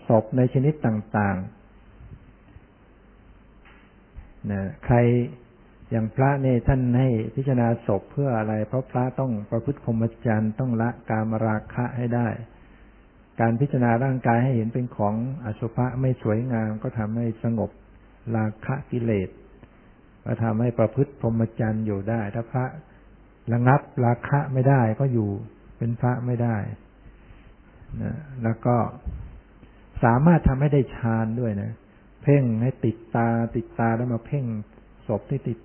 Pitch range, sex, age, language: 110-130 Hz, male, 60-79, Thai